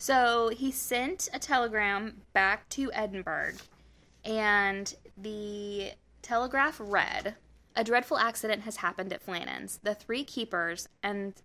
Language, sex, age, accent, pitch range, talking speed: English, female, 20-39, American, 185-220 Hz, 120 wpm